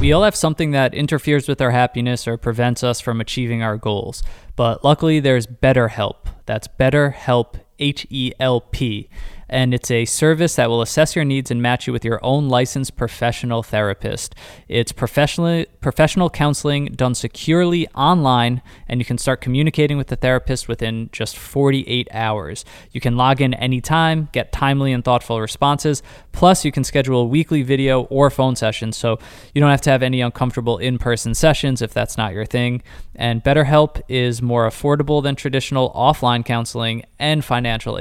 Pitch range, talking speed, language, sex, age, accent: 115-140 Hz, 165 wpm, English, male, 20-39, American